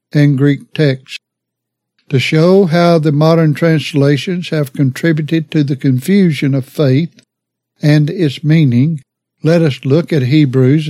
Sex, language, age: male, English, 60-79